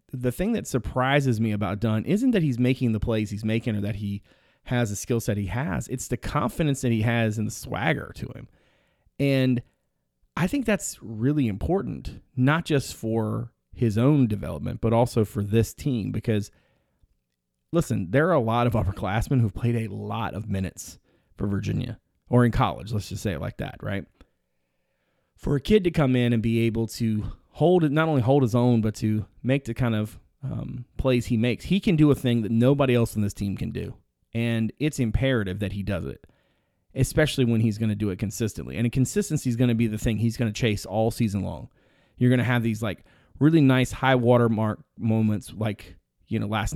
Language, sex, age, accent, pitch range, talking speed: English, male, 30-49, American, 105-130 Hz, 210 wpm